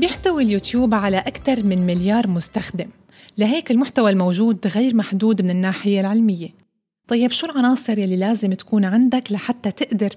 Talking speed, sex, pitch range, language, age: 140 wpm, female, 200-250 Hz, Arabic, 30-49